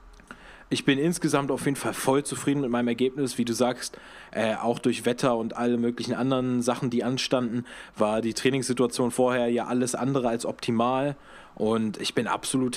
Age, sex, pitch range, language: 20-39, male, 115-130 Hz, German